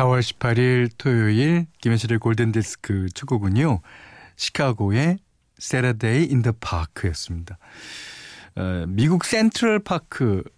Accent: native